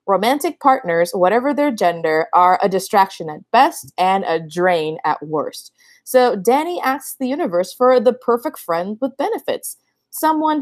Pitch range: 185-270 Hz